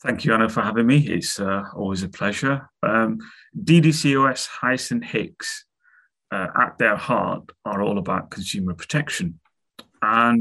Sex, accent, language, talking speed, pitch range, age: male, British, English, 150 wpm, 95-120 Hz, 30-49